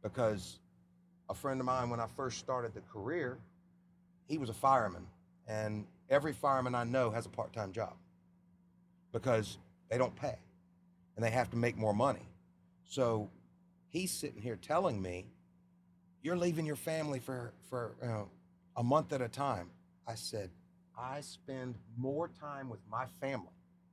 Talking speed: 155 wpm